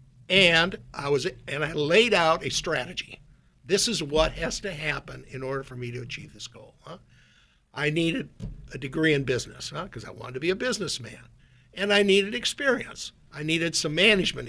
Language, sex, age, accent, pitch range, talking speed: English, male, 60-79, American, 130-165 Hz, 190 wpm